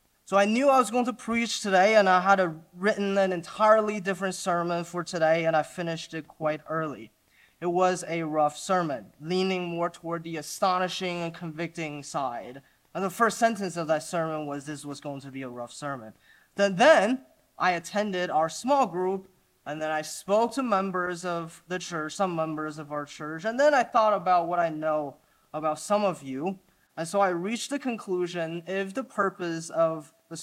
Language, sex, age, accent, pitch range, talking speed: English, male, 20-39, American, 155-195 Hz, 195 wpm